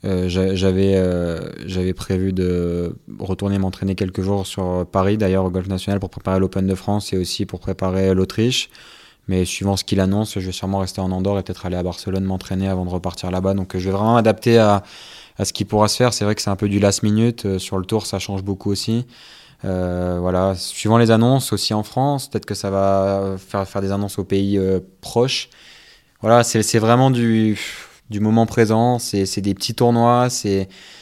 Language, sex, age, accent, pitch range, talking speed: French, male, 20-39, French, 95-110 Hz, 210 wpm